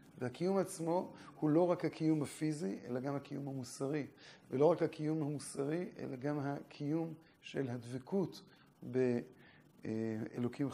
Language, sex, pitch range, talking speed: Hebrew, male, 130-165 Hz, 115 wpm